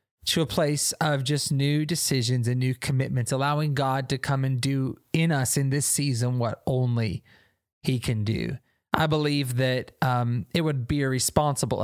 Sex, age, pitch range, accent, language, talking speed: male, 20-39, 120-145 Hz, American, English, 170 wpm